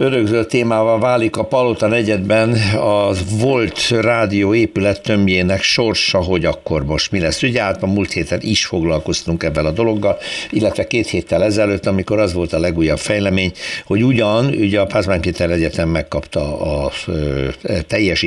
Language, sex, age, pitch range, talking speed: Hungarian, male, 60-79, 85-115 Hz, 145 wpm